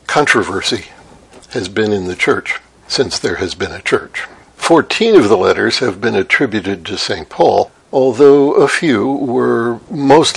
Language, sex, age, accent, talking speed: English, male, 60-79, American, 155 wpm